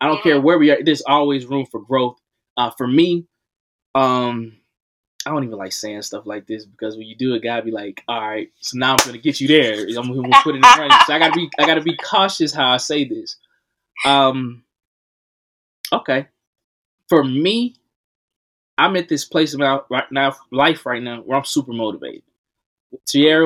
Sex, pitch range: male, 125-155 Hz